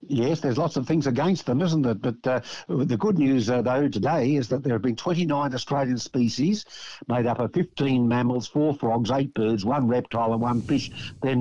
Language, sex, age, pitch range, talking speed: English, male, 60-79, 115-140 Hz, 210 wpm